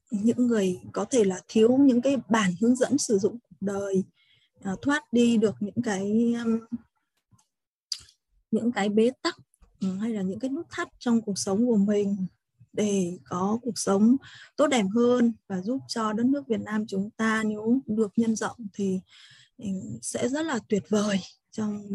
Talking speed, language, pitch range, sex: 165 wpm, Vietnamese, 195-240 Hz, female